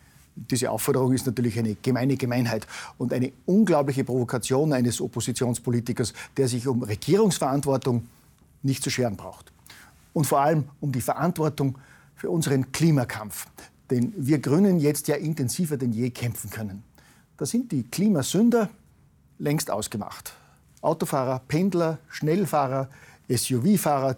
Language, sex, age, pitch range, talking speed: German, male, 50-69, 120-155 Hz, 125 wpm